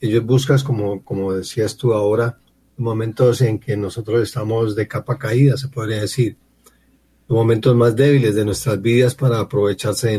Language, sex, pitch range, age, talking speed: Spanish, male, 100-125 Hz, 40-59, 165 wpm